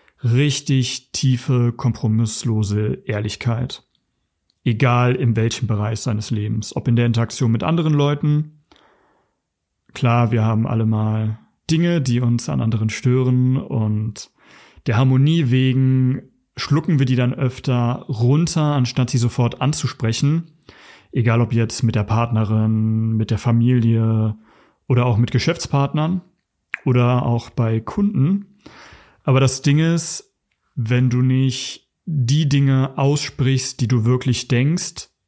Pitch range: 115-140 Hz